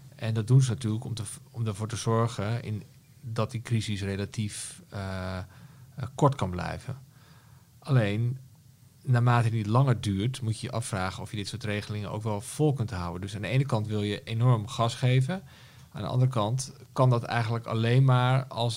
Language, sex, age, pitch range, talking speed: Dutch, male, 40-59, 100-125 Hz, 190 wpm